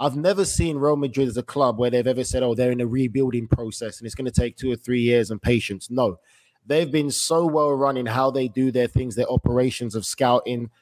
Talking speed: 250 wpm